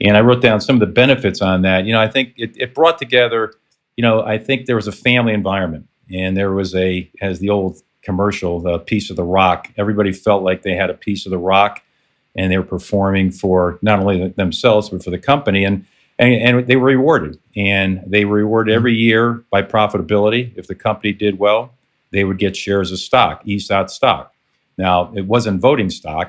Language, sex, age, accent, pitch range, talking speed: English, male, 50-69, American, 95-115 Hz, 215 wpm